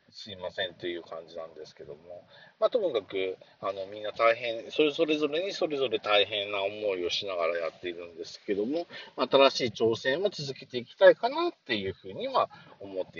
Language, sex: Japanese, male